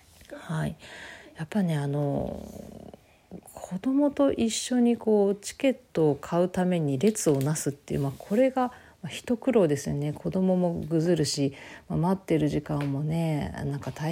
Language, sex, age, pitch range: Japanese, female, 40-59, 150-205 Hz